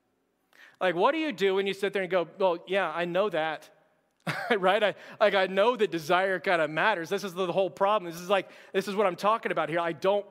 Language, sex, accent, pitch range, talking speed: English, male, American, 165-205 Hz, 250 wpm